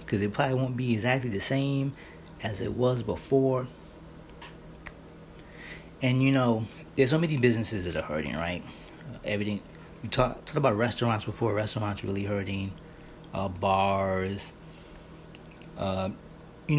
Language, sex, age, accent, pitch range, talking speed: English, male, 30-49, American, 105-135 Hz, 130 wpm